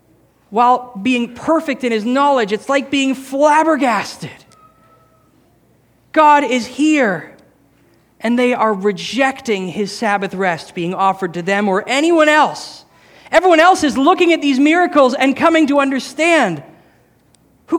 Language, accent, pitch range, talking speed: English, American, 170-260 Hz, 130 wpm